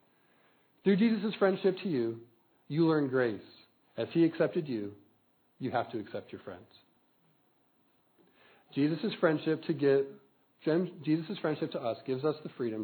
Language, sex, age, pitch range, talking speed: English, male, 40-59, 115-160 Hz, 125 wpm